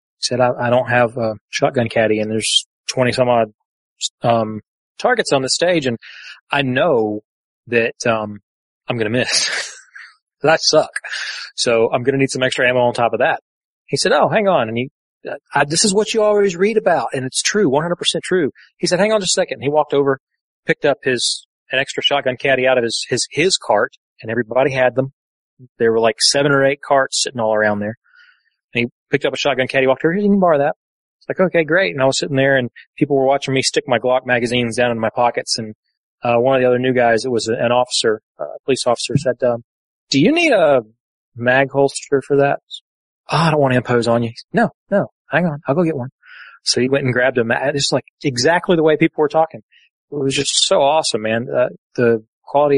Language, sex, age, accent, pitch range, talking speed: English, male, 30-49, American, 120-145 Hz, 230 wpm